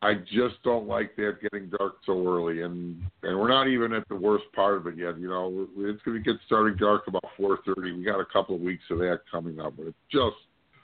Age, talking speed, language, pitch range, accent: 50-69, 245 wpm, English, 90-125 Hz, American